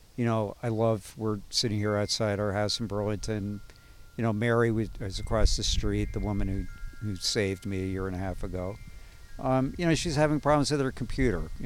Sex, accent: male, American